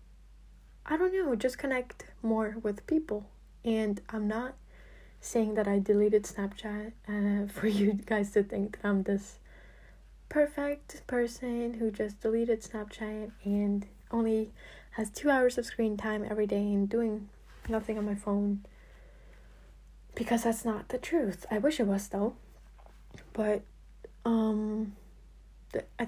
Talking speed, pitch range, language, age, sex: 140 wpm, 200-225 Hz, English, 10-29, female